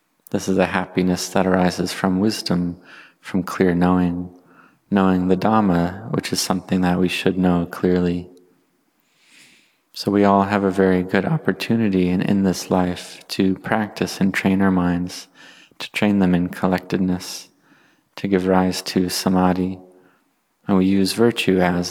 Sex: male